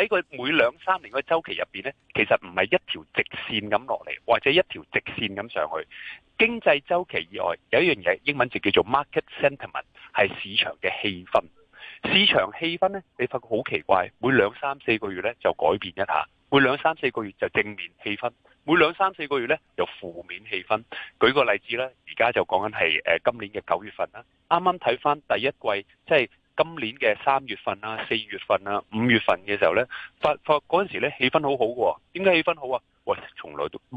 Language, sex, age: Chinese, male, 30-49